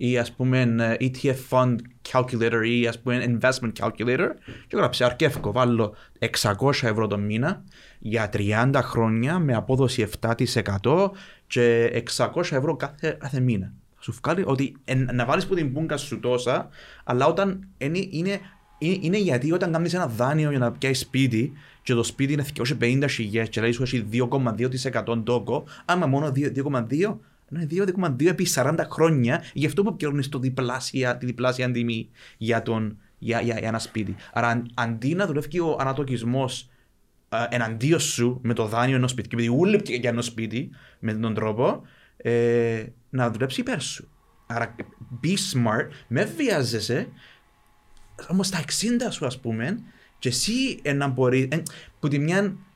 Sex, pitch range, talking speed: male, 115-150 Hz, 155 wpm